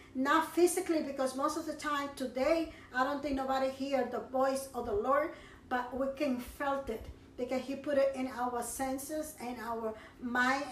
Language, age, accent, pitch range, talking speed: English, 40-59, American, 260-325 Hz, 185 wpm